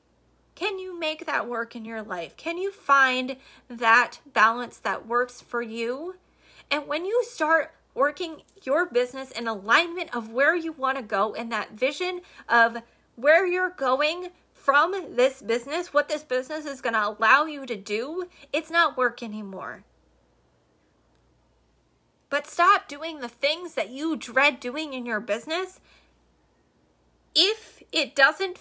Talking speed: 150 wpm